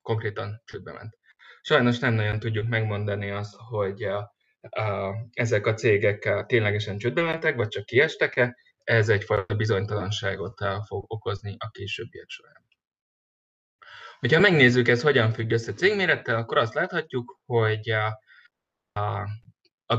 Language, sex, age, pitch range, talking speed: Hungarian, male, 20-39, 105-120 Hz, 120 wpm